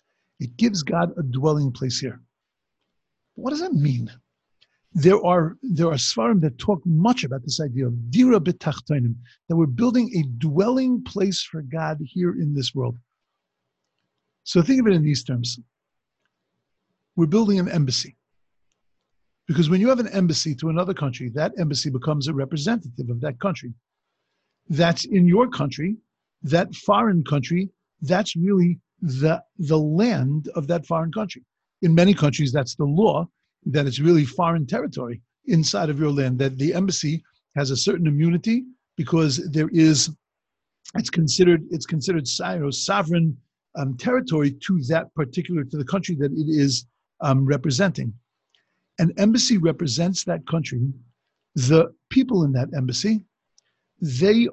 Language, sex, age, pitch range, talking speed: English, male, 50-69, 145-185 Hz, 145 wpm